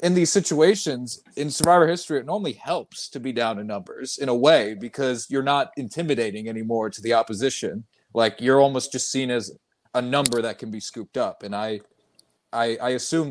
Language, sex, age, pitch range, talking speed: English, male, 30-49, 120-160 Hz, 195 wpm